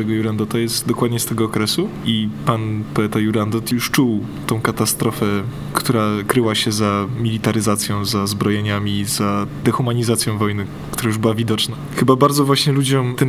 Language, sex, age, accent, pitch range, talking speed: Polish, male, 20-39, native, 110-140 Hz, 150 wpm